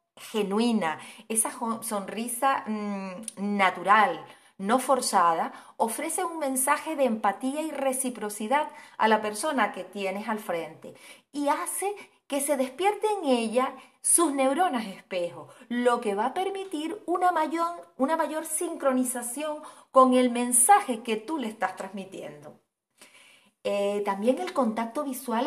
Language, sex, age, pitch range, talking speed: Spanish, female, 30-49, 210-285 Hz, 125 wpm